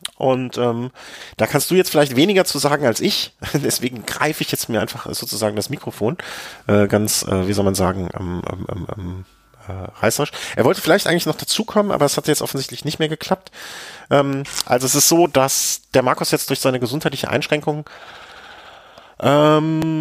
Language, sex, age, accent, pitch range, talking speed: German, male, 40-59, German, 115-145 Hz, 185 wpm